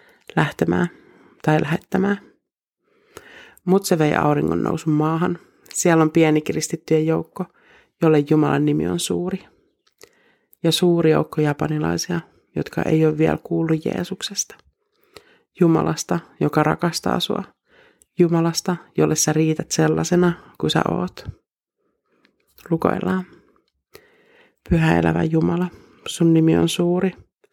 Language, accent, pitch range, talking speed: Finnish, native, 155-205 Hz, 105 wpm